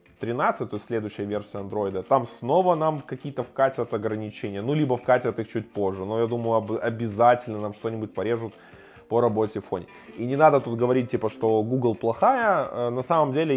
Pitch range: 110-145 Hz